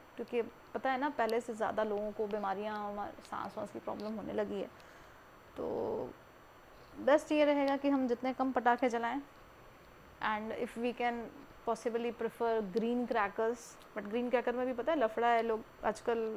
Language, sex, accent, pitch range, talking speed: Hindi, female, native, 215-245 Hz, 170 wpm